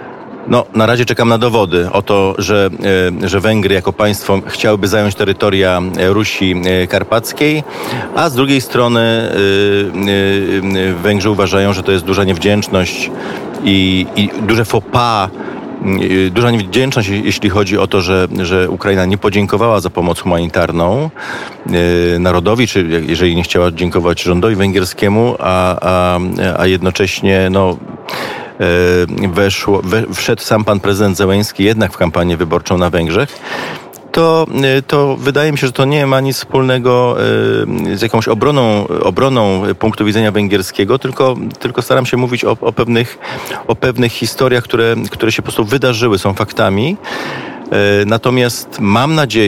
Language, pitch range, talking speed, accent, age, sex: Polish, 95-115 Hz, 130 wpm, native, 40-59, male